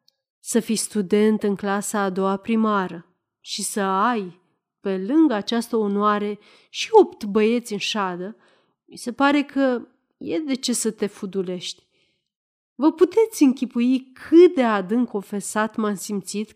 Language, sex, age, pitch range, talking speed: Romanian, female, 30-49, 200-305 Hz, 140 wpm